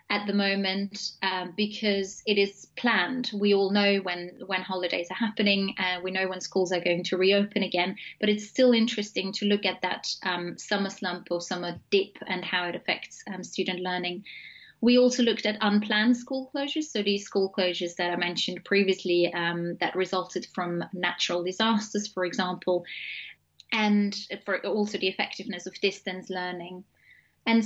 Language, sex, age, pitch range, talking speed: English, female, 20-39, 185-210 Hz, 170 wpm